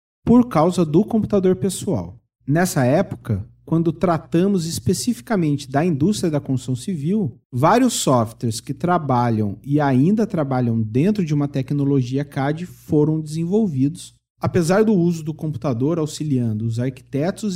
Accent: Brazilian